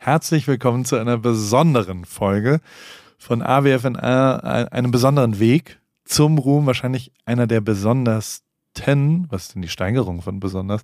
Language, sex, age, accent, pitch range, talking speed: German, male, 30-49, German, 115-145 Hz, 135 wpm